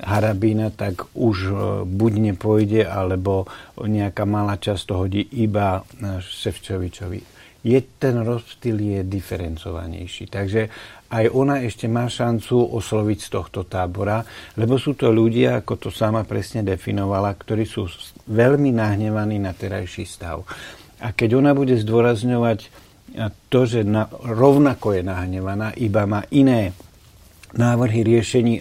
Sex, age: male, 60-79